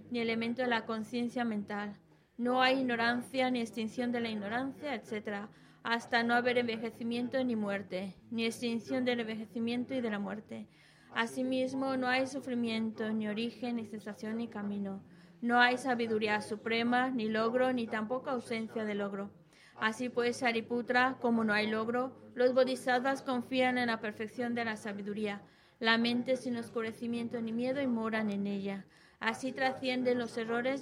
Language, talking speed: Spanish, 155 wpm